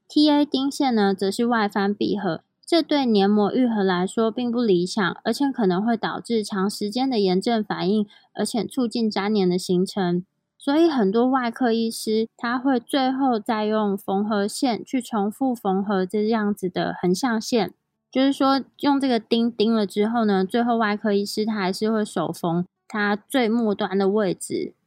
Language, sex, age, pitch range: Chinese, female, 20-39, 200-250 Hz